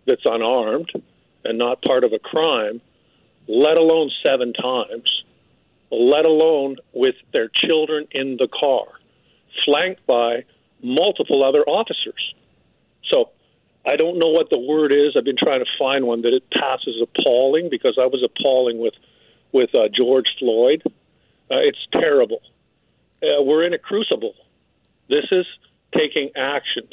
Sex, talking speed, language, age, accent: male, 145 wpm, English, 50-69, American